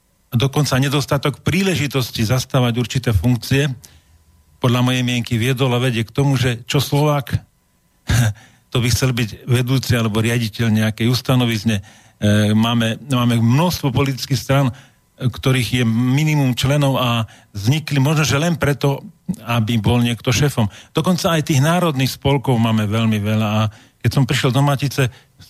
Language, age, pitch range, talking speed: Slovak, 40-59, 115-140 Hz, 140 wpm